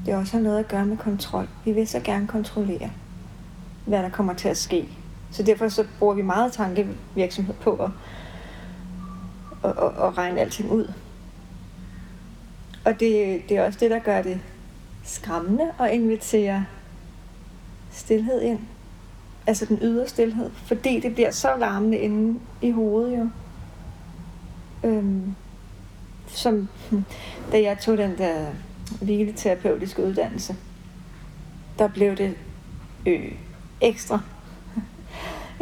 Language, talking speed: Danish, 130 wpm